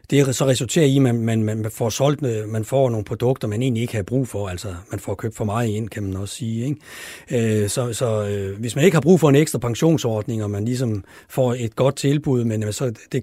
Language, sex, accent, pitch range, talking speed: Danish, male, native, 110-140 Hz, 245 wpm